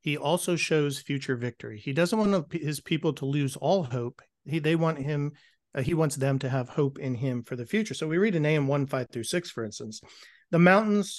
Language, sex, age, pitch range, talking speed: English, male, 40-59, 135-165 Hz, 230 wpm